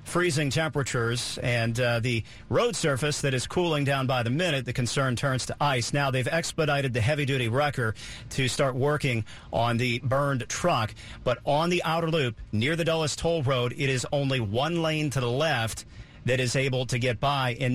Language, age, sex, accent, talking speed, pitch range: English, 40-59, male, American, 195 wpm, 120-145 Hz